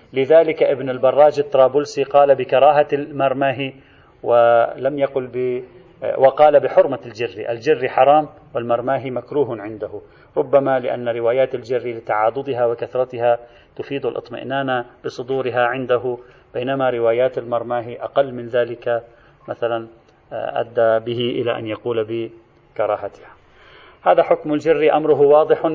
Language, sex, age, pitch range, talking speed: Arabic, male, 40-59, 120-145 Hz, 105 wpm